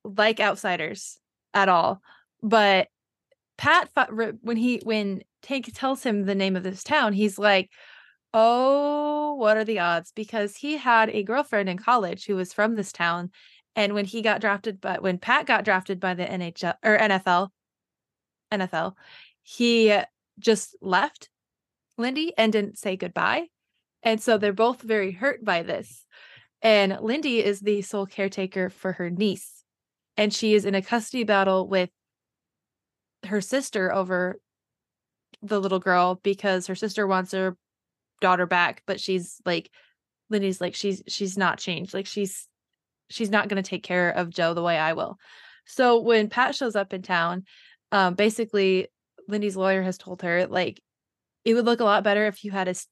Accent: American